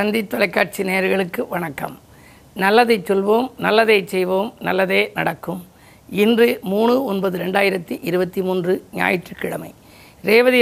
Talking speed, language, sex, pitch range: 100 wpm, Tamil, female, 190-230 Hz